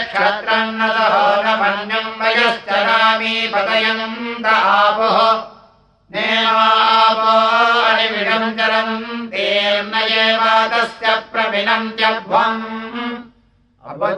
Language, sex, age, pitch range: Russian, male, 60-79, 220-225 Hz